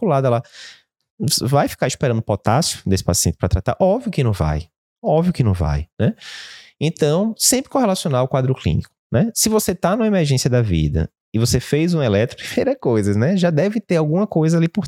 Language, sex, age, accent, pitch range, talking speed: Portuguese, male, 20-39, Brazilian, 90-145 Hz, 195 wpm